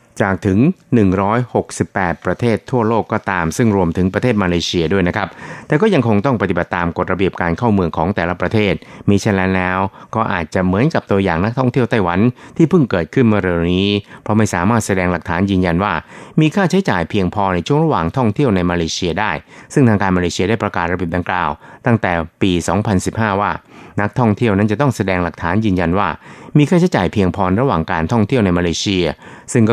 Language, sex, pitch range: Thai, male, 90-115 Hz